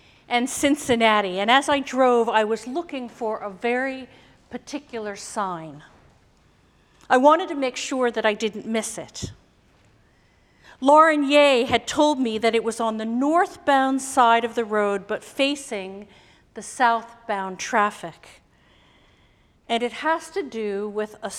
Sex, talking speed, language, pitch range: female, 145 wpm, English, 210-260 Hz